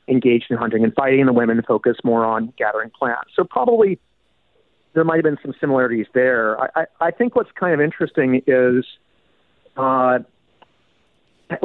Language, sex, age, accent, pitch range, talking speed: English, male, 40-59, American, 125-170 Hz, 170 wpm